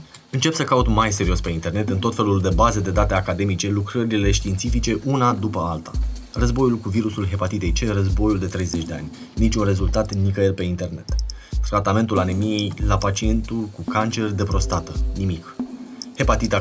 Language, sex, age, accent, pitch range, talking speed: Romanian, male, 20-39, native, 95-125 Hz, 165 wpm